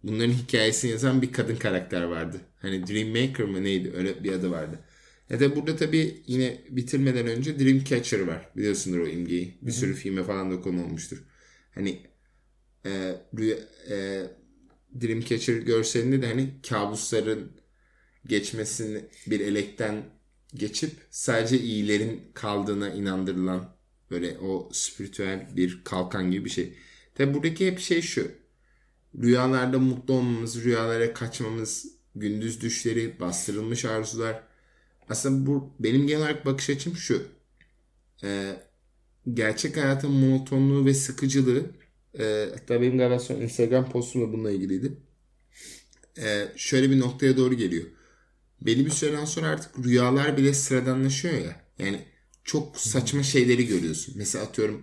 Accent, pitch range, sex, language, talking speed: native, 105-135 Hz, male, Turkish, 130 wpm